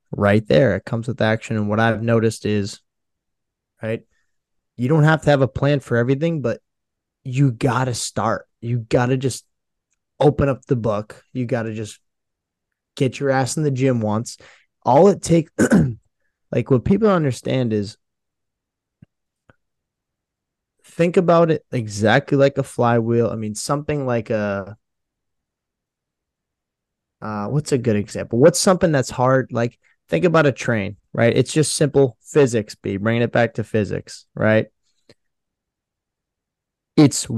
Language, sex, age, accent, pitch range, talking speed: English, male, 20-39, American, 110-135 Hz, 150 wpm